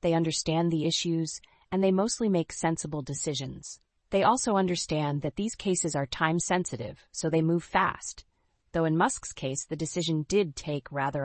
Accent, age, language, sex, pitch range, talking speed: American, 30-49, English, female, 145-180 Hz, 165 wpm